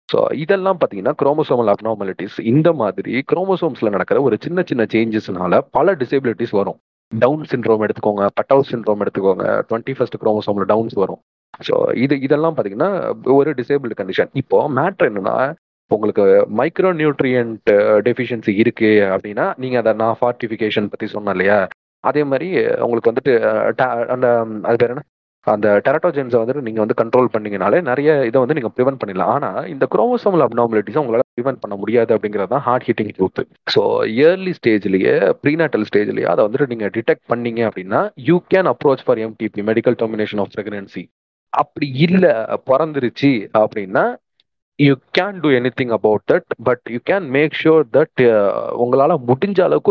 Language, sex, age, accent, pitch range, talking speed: Tamil, male, 30-49, native, 110-150 Hz, 150 wpm